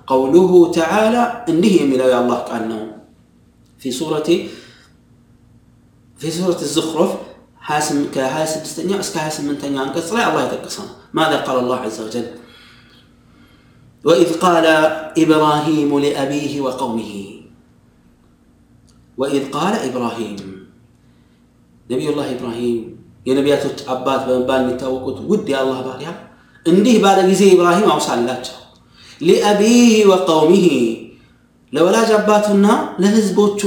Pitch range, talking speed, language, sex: 135-205 Hz, 85 wpm, Amharic, male